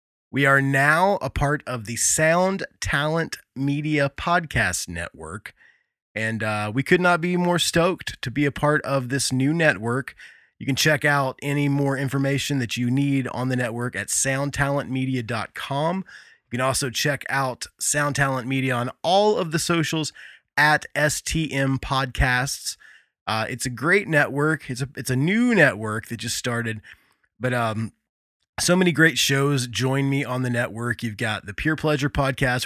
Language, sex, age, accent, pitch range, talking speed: English, male, 20-39, American, 115-155 Hz, 165 wpm